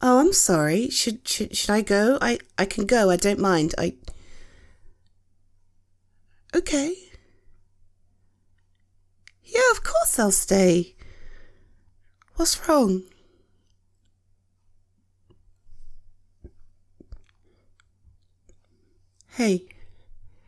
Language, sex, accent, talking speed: English, female, British, 75 wpm